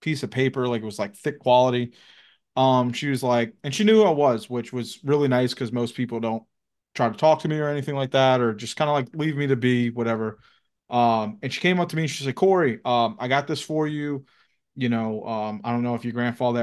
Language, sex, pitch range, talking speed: English, male, 115-140 Hz, 255 wpm